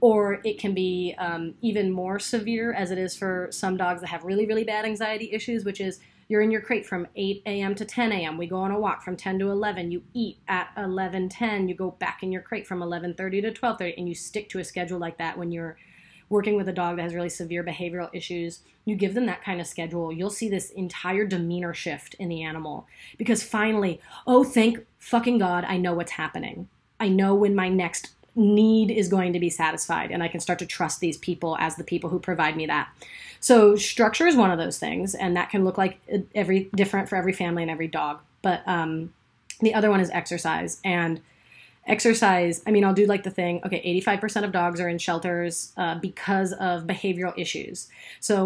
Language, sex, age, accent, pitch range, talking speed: English, female, 30-49, American, 175-205 Hz, 220 wpm